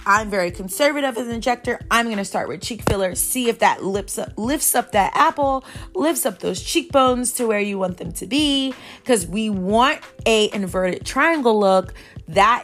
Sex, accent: female, American